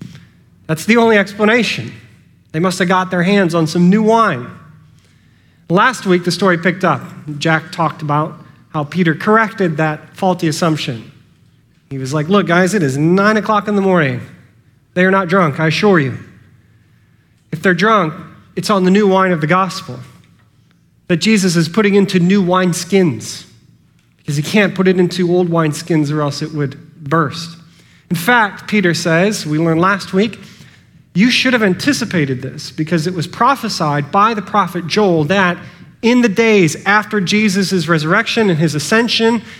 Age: 30-49